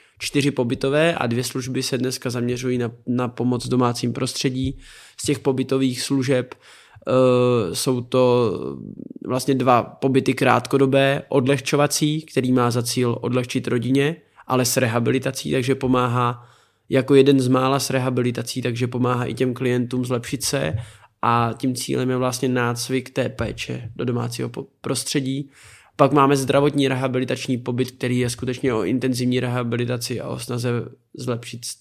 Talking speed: 145 wpm